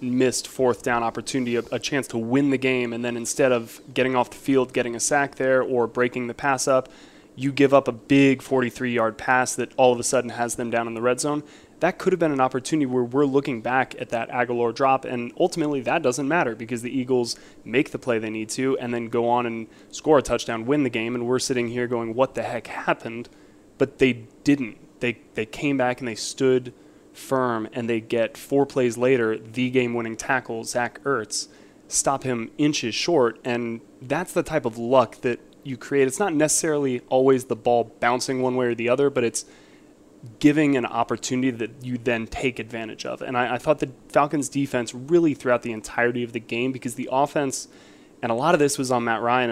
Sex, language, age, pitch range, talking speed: male, English, 20-39, 120-135 Hz, 215 wpm